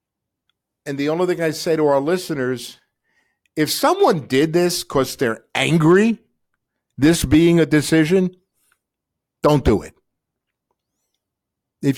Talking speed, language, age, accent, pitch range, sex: 120 wpm, English, 50-69, American, 135-180 Hz, male